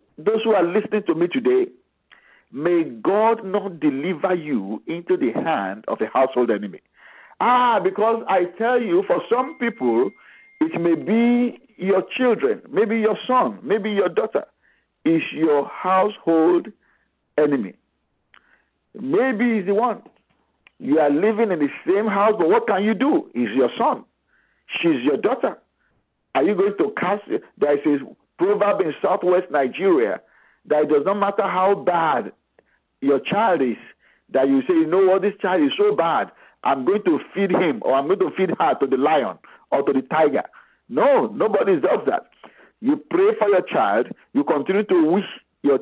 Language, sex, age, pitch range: English, male, 50-69, 185-285 Hz